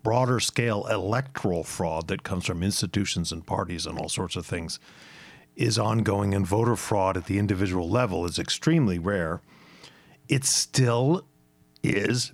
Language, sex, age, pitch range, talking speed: English, male, 50-69, 85-115 Hz, 145 wpm